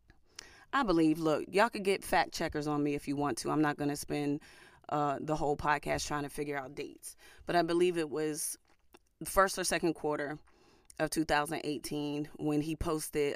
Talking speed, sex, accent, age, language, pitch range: 185 wpm, female, American, 30-49, English, 145-195 Hz